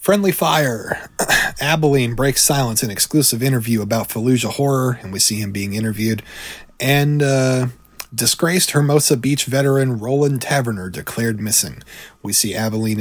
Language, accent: English, American